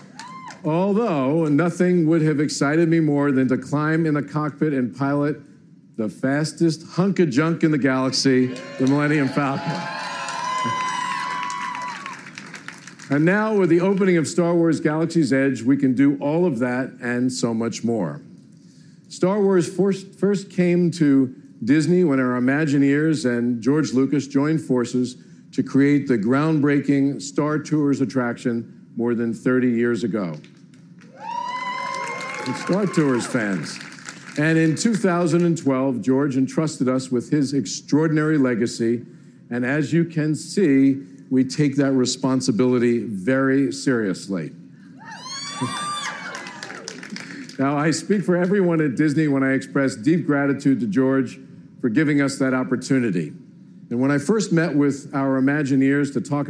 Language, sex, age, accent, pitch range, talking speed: English, male, 50-69, American, 130-170 Hz, 135 wpm